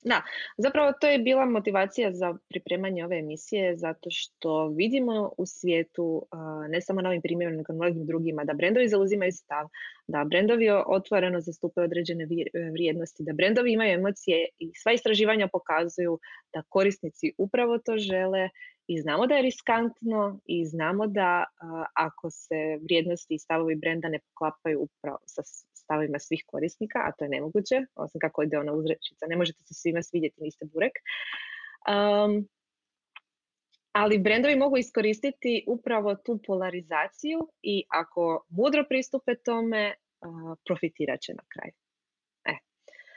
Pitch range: 170-225 Hz